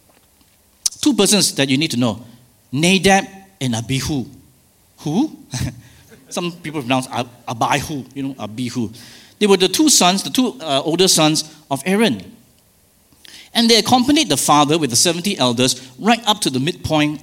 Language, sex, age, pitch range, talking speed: English, male, 50-69, 120-190 Hz, 155 wpm